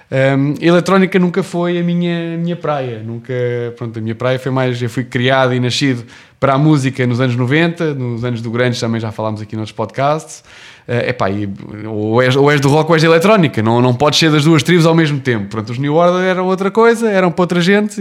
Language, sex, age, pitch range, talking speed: English, male, 20-39, 115-160 Hz, 230 wpm